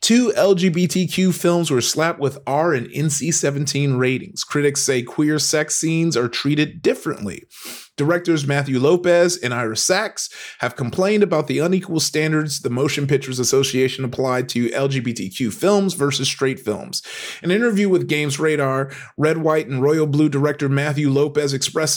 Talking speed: 155 wpm